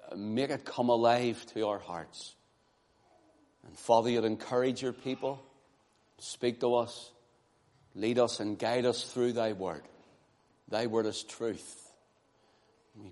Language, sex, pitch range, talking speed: English, male, 110-130 Hz, 135 wpm